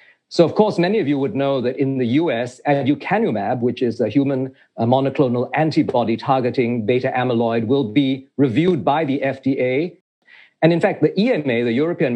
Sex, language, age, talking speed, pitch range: male, English, 50-69, 175 wpm, 125-155 Hz